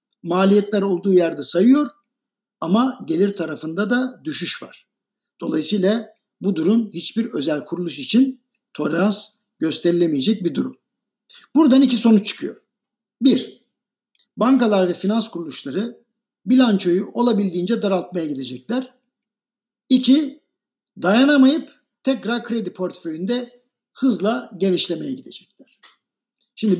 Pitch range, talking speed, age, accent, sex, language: 180-245 Hz, 95 wpm, 60-79, native, male, Turkish